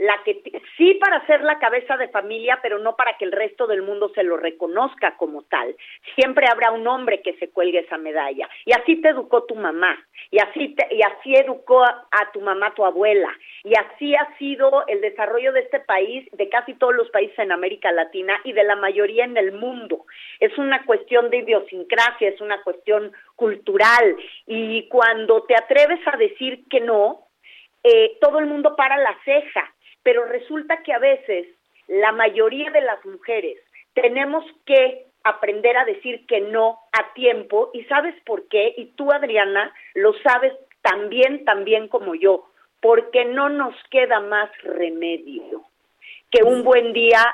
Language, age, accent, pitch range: Spanish, 40-59, Mexican, 210-275 Hz